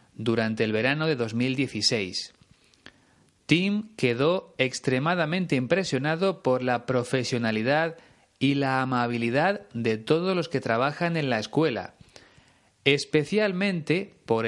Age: 30-49